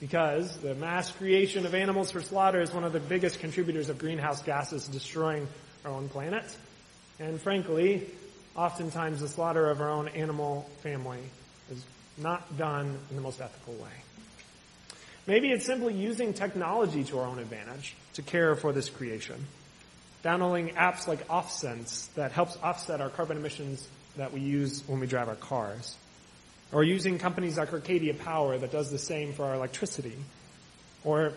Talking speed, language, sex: 165 wpm, English, male